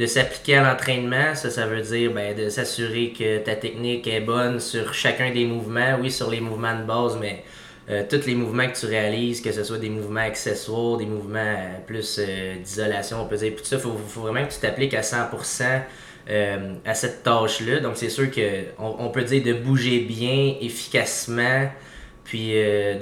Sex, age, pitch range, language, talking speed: male, 20-39, 110-125 Hz, French, 205 wpm